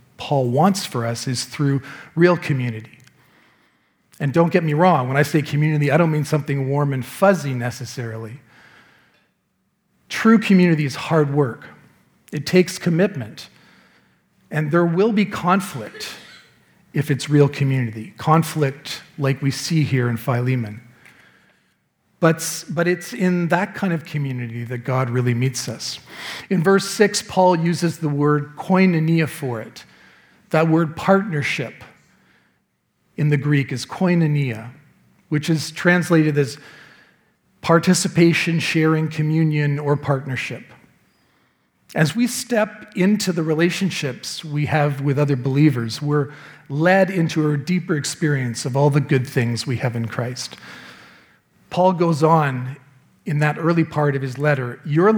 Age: 40-59